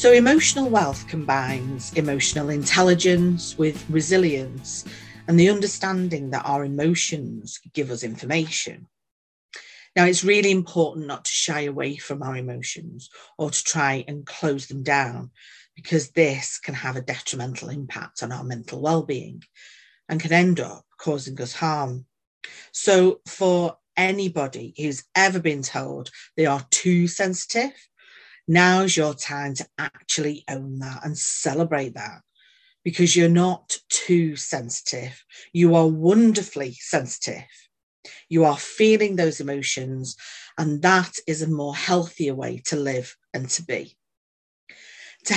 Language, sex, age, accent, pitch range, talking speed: English, female, 40-59, British, 140-175 Hz, 135 wpm